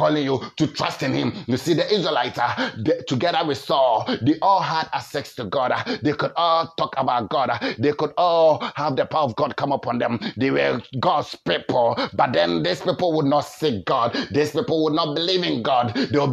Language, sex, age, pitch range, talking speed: English, male, 30-49, 135-160 Hz, 210 wpm